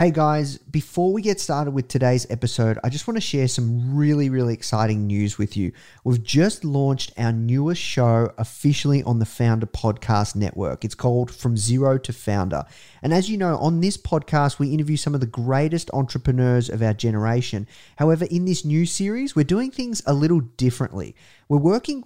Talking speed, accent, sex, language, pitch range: 190 wpm, Australian, male, English, 120-160 Hz